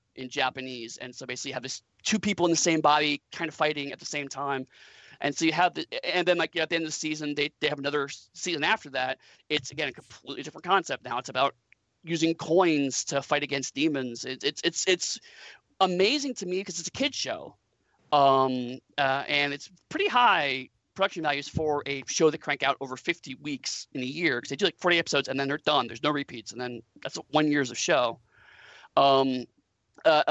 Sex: male